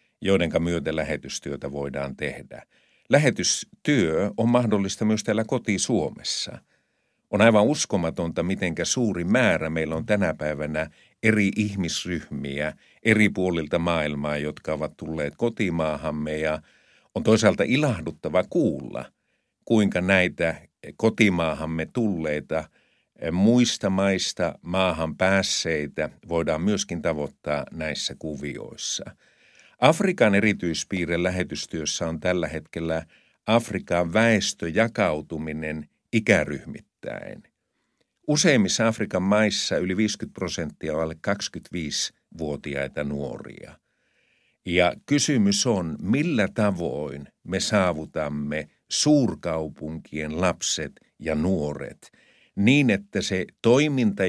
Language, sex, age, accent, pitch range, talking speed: Finnish, male, 50-69, native, 75-105 Hz, 90 wpm